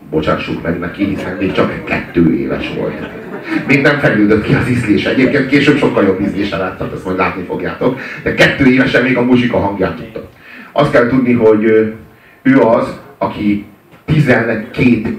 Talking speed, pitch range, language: 165 wpm, 100-130 Hz, Hungarian